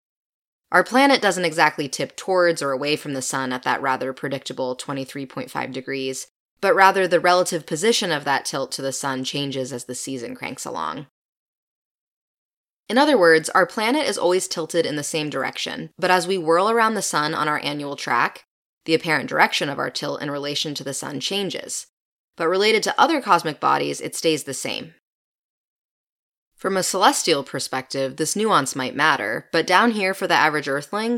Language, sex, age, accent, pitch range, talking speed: English, female, 10-29, American, 135-180 Hz, 180 wpm